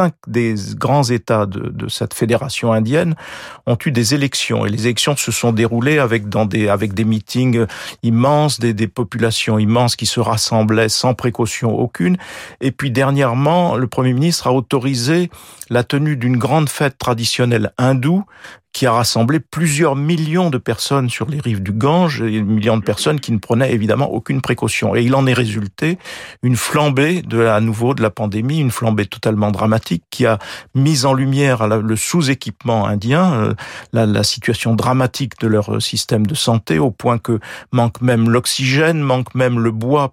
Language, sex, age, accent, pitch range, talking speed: French, male, 50-69, French, 110-135 Hz, 175 wpm